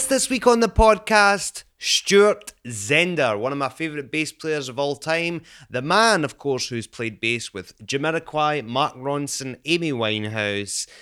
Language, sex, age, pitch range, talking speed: English, male, 20-39, 105-155 Hz, 160 wpm